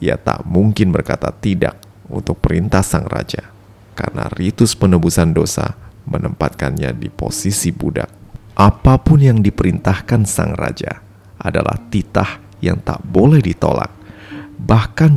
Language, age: Indonesian, 30-49